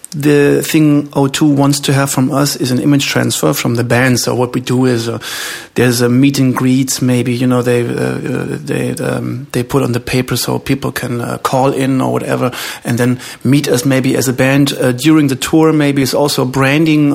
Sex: male